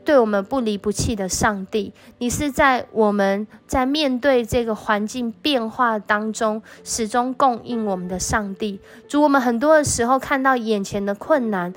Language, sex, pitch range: Chinese, female, 205-255 Hz